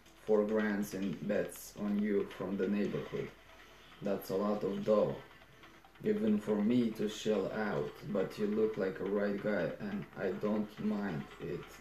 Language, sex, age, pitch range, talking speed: Romanian, male, 20-39, 100-125 Hz, 165 wpm